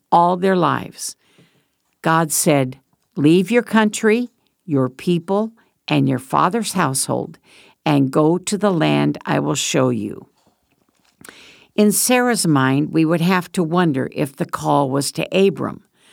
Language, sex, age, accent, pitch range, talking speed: English, female, 60-79, American, 150-210 Hz, 140 wpm